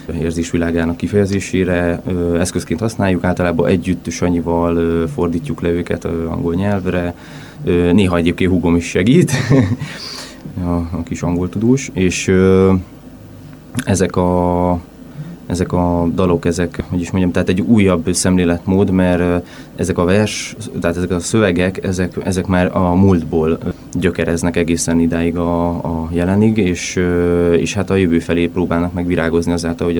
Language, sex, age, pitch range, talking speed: Hungarian, male, 20-39, 85-95 Hz, 140 wpm